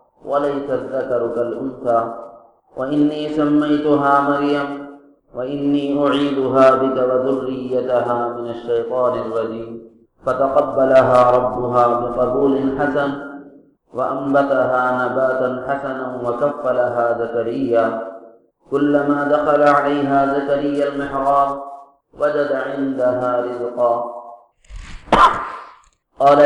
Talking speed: 70 wpm